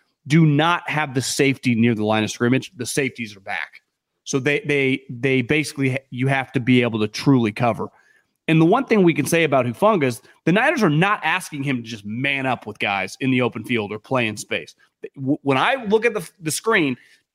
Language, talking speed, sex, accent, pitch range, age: English, 220 wpm, male, American, 135-180 Hz, 30-49